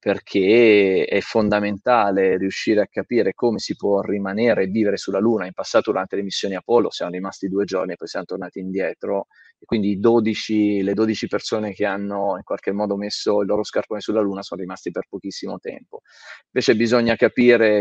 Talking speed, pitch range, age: 180 wpm, 100-115 Hz, 20-39